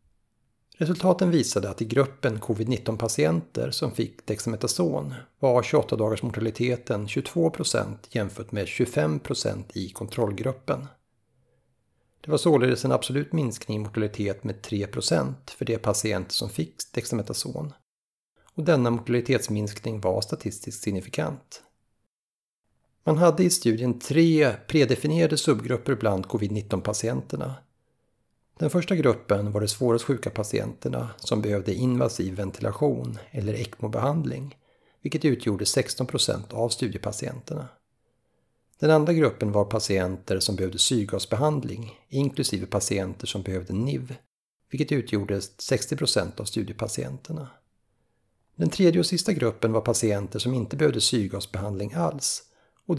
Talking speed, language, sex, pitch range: 110 wpm, Swedish, male, 105-135 Hz